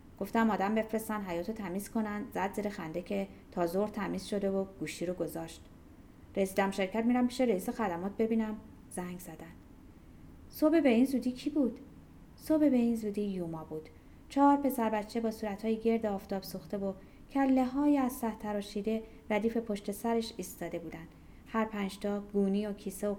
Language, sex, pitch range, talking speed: Persian, female, 195-245 Hz, 165 wpm